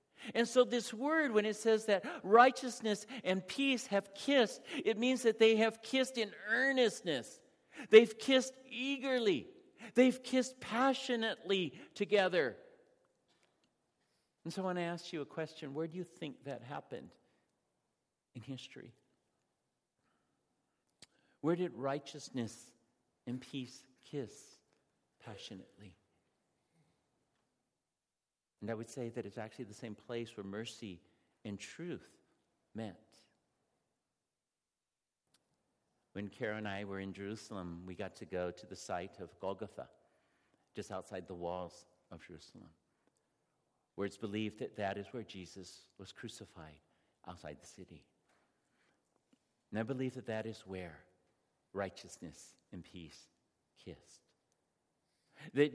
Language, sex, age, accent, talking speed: English, male, 50-69, American, 125 wpm